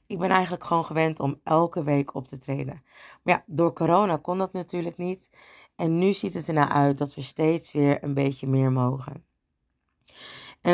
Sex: female